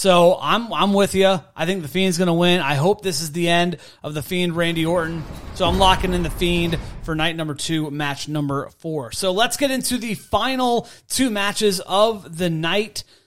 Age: 30-49